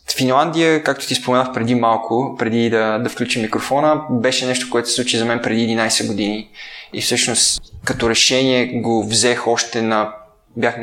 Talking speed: 170 wpm